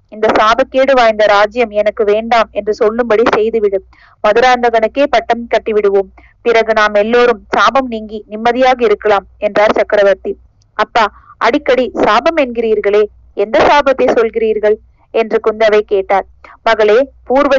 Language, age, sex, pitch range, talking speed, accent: Tamil, 20-39, female, 210-245 Hz, 115 wpm, native